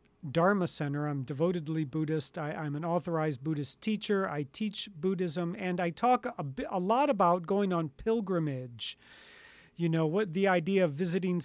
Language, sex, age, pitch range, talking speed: English, male, 40-59, 155-205 Hz, 170 wpm